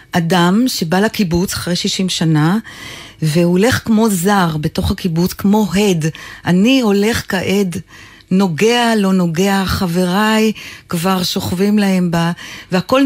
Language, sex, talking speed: Hebrew, female, 115 wpm